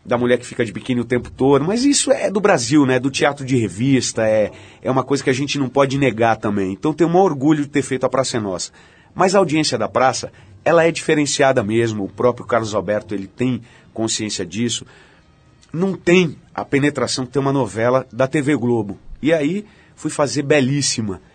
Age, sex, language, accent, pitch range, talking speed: 40-59, male, Portuguese, Brazilian, 115-145 Hz, 210 wpm